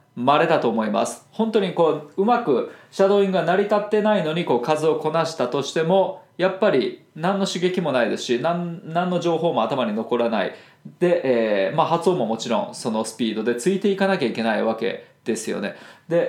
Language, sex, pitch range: Japanese, male, 125-195 Hz